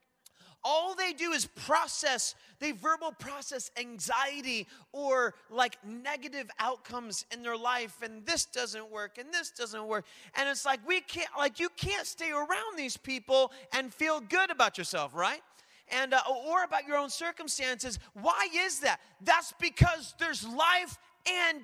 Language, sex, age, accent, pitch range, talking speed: English, male, 30-49, American, 240-330 Hz, 160 wpm